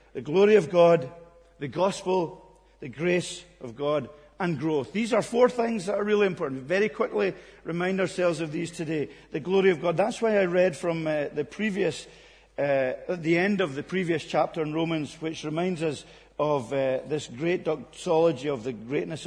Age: 50-69